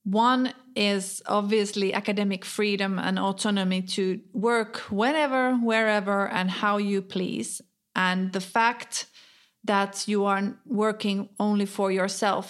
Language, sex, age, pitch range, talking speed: Finnish, female, 30-49, 195-215 Hz, 120 wpm